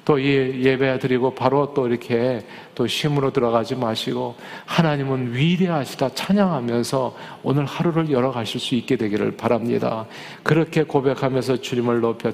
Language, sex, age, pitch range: Korean, male, 40-59, 120-150 Hz